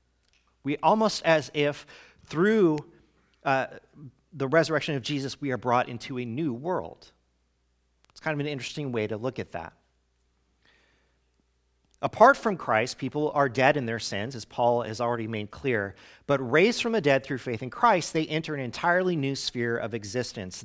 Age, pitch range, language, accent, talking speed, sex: 40-59, 105-160 Hz, English, American, 170 wpm, male